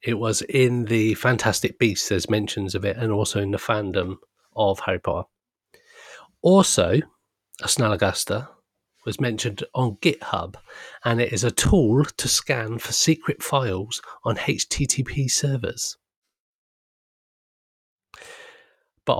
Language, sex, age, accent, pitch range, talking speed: English, male, 40-59, British, 105-125 Hz, 120 wpm